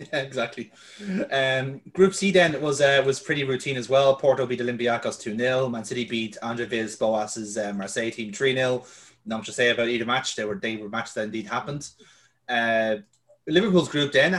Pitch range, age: 115-155 Hz, 30-49